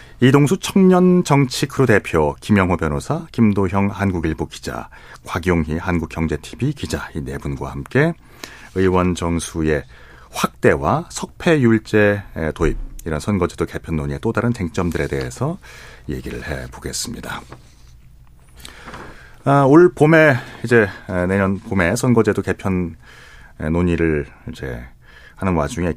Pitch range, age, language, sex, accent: 85-125 Hz, 40-59, Korean, male, native